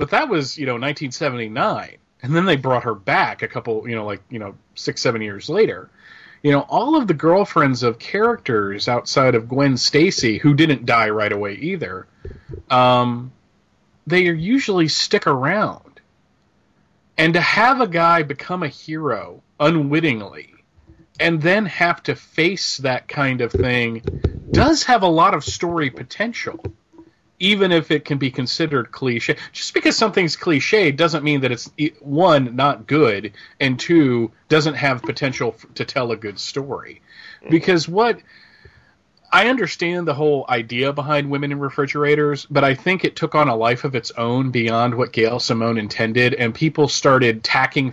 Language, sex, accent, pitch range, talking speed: English, male, American, 120-160 Hz, 165 wpm